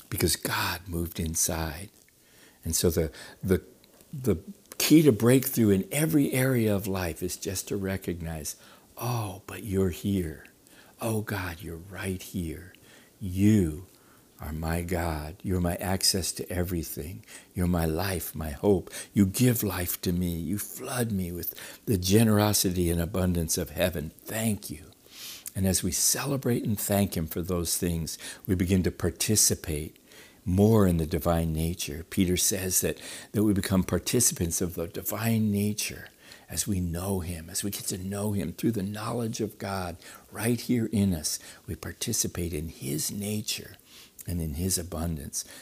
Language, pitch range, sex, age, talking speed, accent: English, 85-105 Hz, male, 60-79, 155 wpm, American